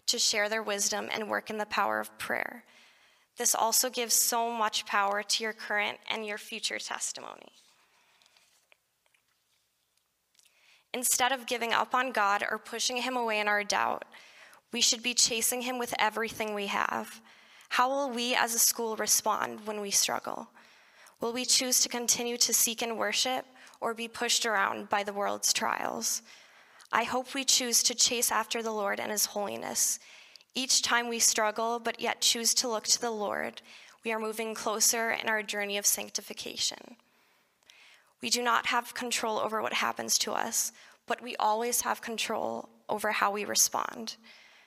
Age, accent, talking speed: 10-29, American, 170 wpm